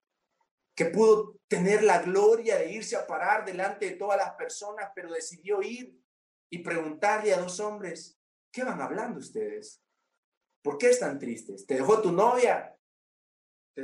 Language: Spanish